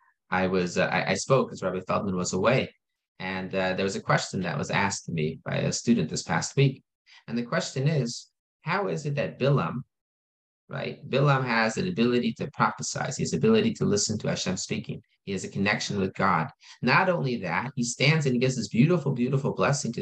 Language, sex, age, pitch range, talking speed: English, male, 30-49, 110-150 Hz, 210 wpm